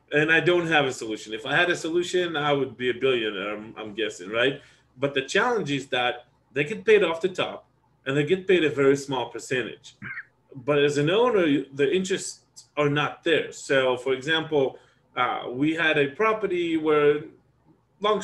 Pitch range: 130-175 Hz